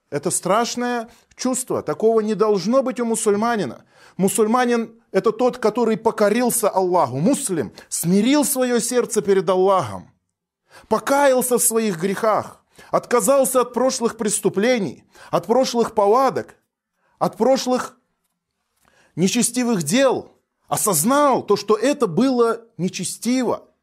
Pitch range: 190-240 Hz